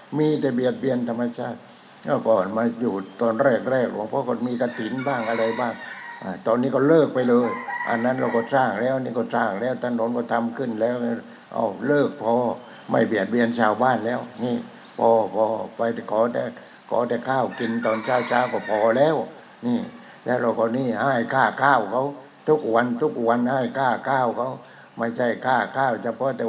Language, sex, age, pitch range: English, male, 60-79, 115-140 Hz